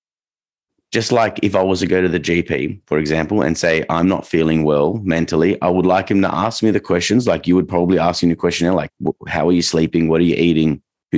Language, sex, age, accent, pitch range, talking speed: English, male, 30-49, Australian, 80-95 Hz, 245 wpm